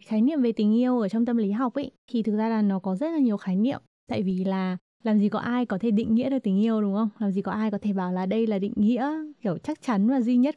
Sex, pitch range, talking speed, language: female, 200-250 Hz, 320 wpm, Vietnamese